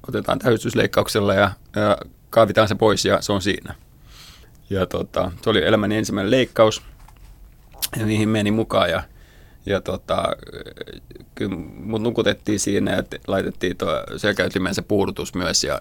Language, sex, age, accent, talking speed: Finnish, male, 30-49, native, 135 wpm